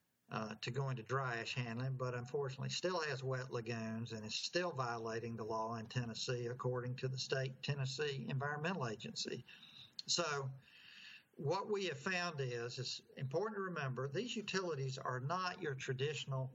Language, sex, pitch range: English, male, 125-150 Hz